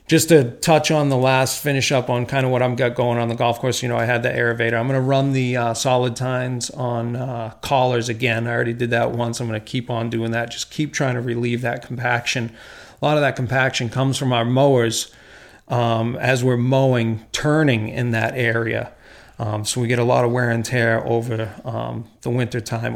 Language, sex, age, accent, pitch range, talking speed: English, male, 40-59, American, 115-130 Hz, 235 wpm